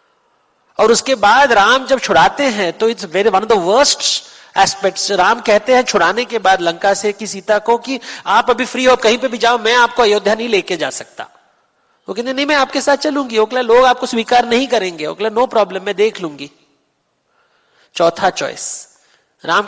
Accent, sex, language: native, male, Hindi